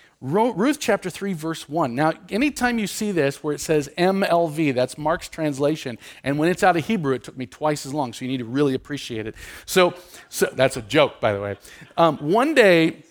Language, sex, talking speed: English, male, 215 wpm